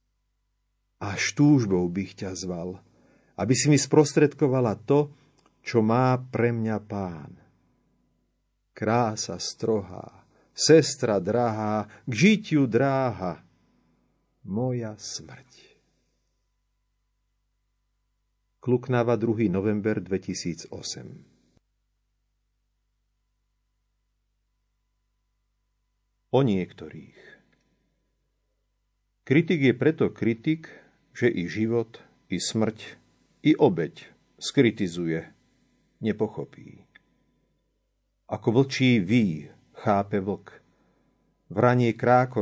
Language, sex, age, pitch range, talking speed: Slovak, male, 50-69, 85-120 Hz, 70 wpm